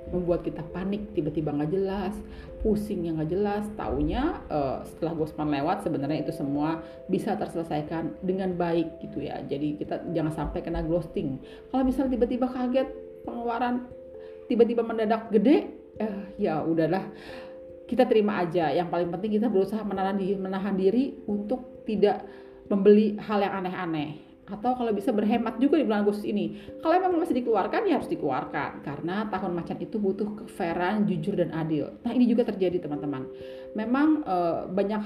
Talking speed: 155 wpm